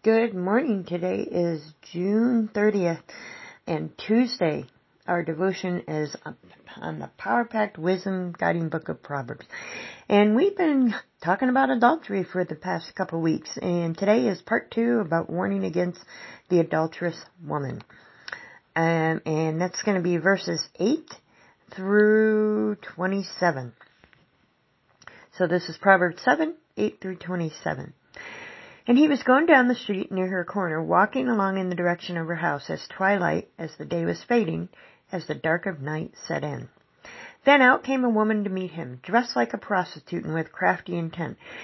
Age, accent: 40-59, American